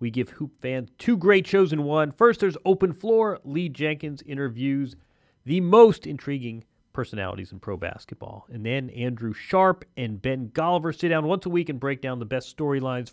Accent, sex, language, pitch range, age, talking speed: American, male, English, 130-190 Hz, 30-49, 185 wpm